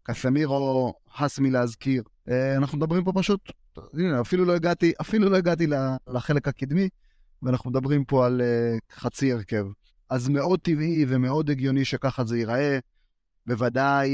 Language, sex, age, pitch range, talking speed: Hebrew, male, 30-49, 125-160 Hz, 130 wpm